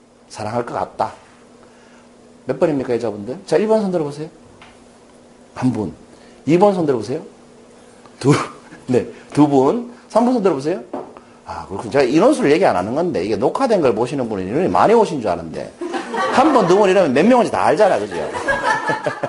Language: Korean